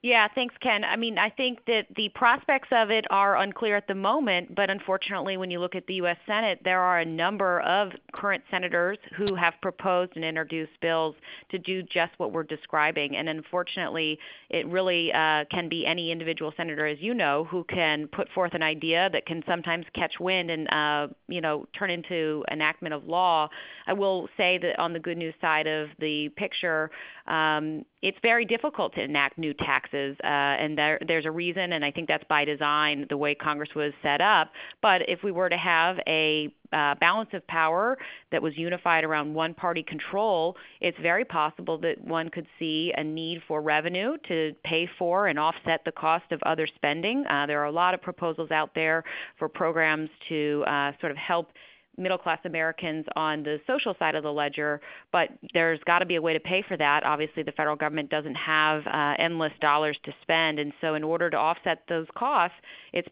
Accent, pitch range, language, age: American, 155-185 Hz, English, 30-49